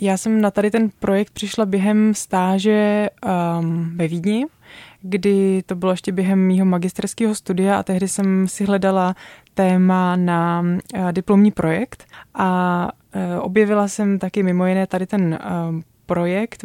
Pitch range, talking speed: 175-200 Hz, 150 wpm